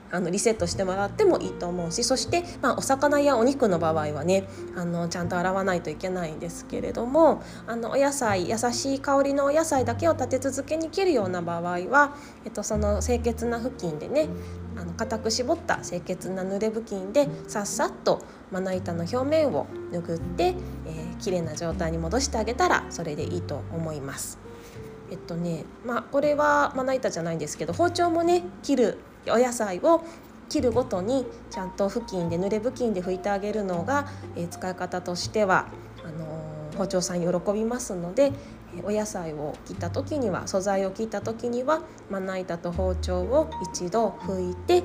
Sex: female